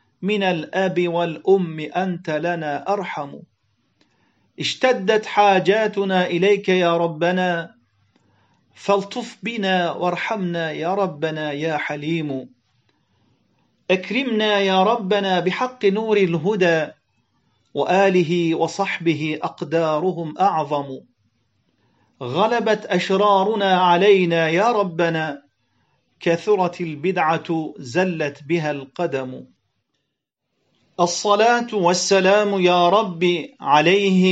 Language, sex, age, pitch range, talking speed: Turkish, male, 40-59, 165-200 Hz, 75 wpm